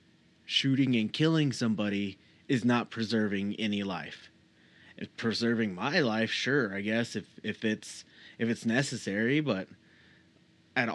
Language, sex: English, male